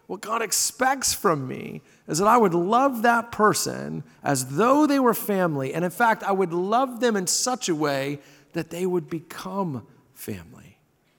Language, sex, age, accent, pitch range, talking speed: English, male, 40-59, American, 155-225 Hz, 175 wpm